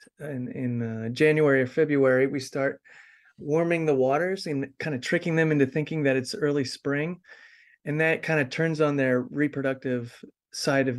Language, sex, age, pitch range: English, male, 30-49, 130-155 Hz